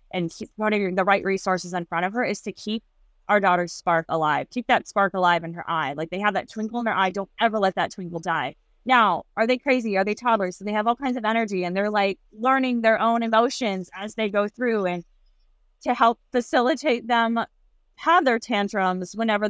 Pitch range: 195-245 Hz